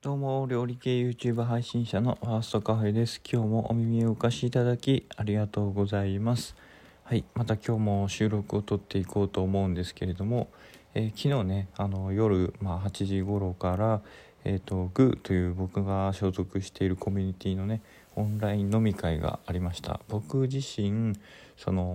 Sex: male